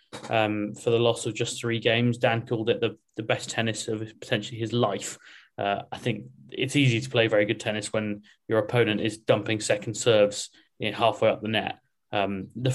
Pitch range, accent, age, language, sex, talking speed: 110-130 Hz, British, 20-39, English, male, 205 wpm